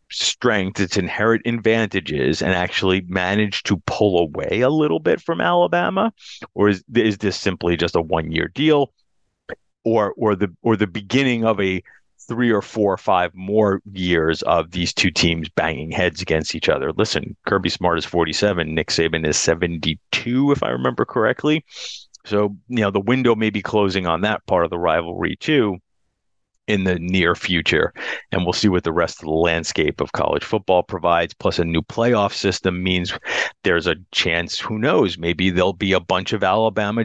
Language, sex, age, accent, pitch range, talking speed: English, male, 30-49, American, 85-110 Hz, 180 wpm